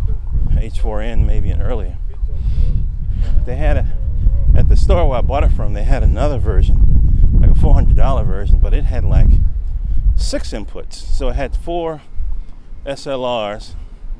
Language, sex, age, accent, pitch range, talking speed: English, male, 40-59, American, 80-110 Hz, 140 wpm